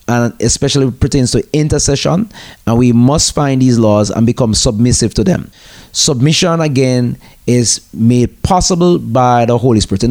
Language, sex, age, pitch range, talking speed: English, male, 30-49, 110-140 Hz, 155 wpm